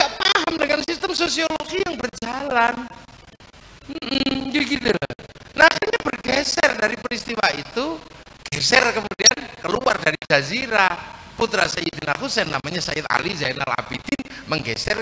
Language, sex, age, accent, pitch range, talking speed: Indonesian, male, 50-69, native, 155-245 Hz, 95 wpm